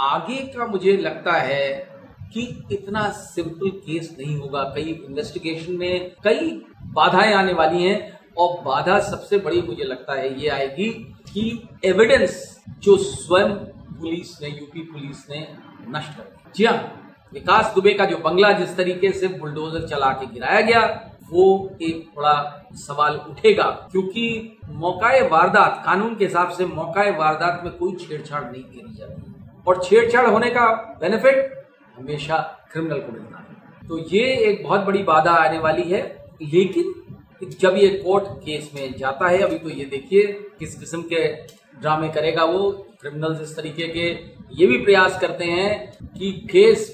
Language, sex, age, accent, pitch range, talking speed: Hindi, male, 50-69, native, 155-200 Hz, 155 wpm